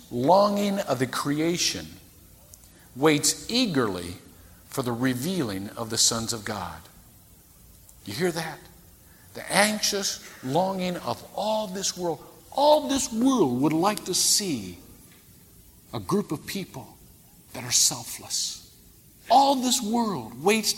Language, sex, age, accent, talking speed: English, male, 50-69, American, 120 wpm